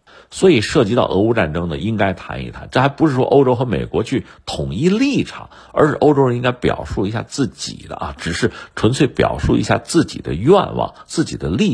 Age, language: 50-69, Chinese